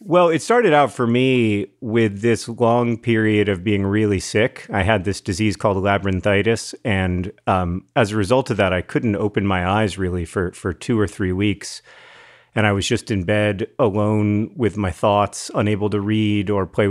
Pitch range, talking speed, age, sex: 100-115 Hz, 190 wpm, 40-59, male